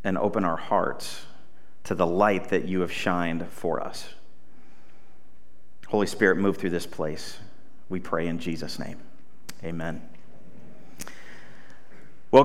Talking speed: 125 wpm